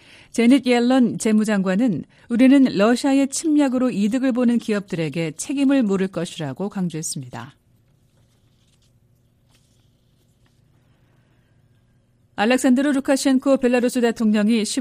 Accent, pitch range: native, 165-235 Hz